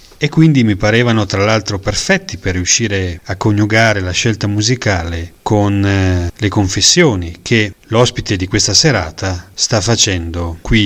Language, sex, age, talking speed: Italian, male, 40-59, 140 wpm